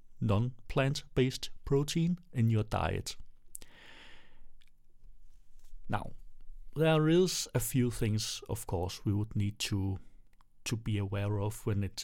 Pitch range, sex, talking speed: 105-125 Hz, male, 115 wpm